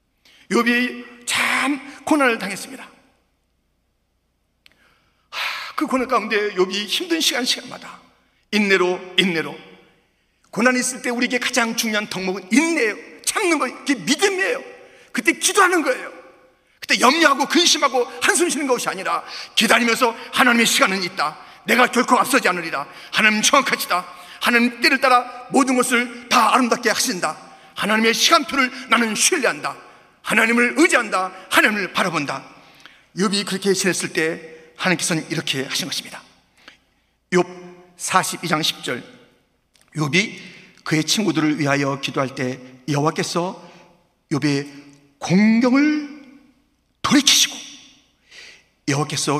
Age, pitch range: 40-59, 175-275 Hz